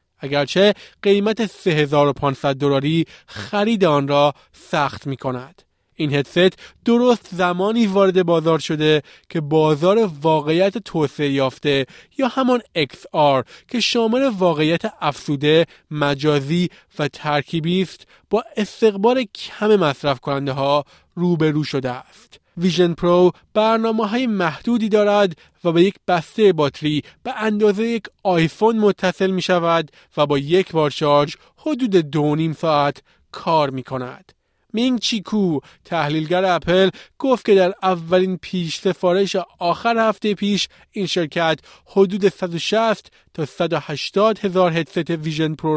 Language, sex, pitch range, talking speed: Persian, male, 150-205 Hz, 125 wpm